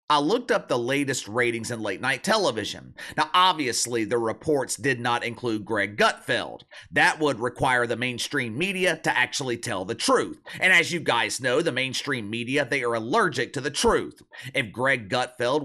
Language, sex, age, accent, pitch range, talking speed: English, male, 30-49, American, 120-165 Hz, 175 wpm